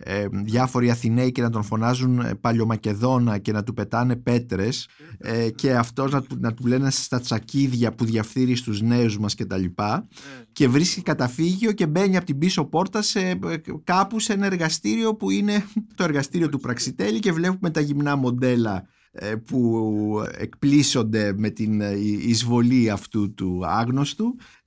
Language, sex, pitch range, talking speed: Greek, male, 115-165 Hz, 150 wpm